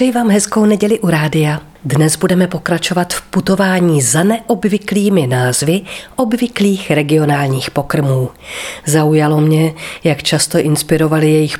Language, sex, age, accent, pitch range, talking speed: Czech, female, 40-59, native, 145-195 Hz, 115 wpm